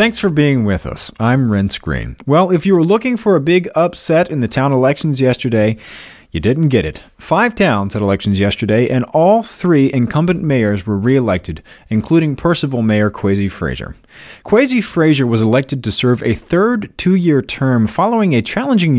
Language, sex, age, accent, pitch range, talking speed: English, male, 30-49, American, 100-145 Hz, 175 wpm